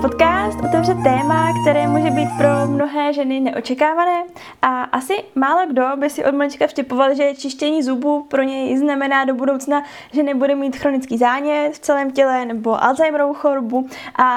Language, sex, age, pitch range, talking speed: Czech, female, 20-39, 260-300 Hz, 160 wpm